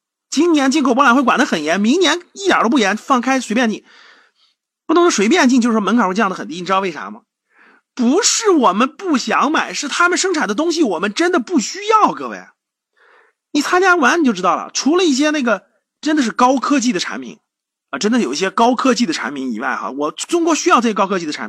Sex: male